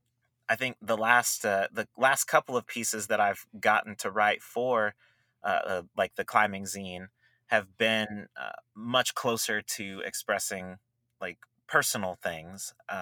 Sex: male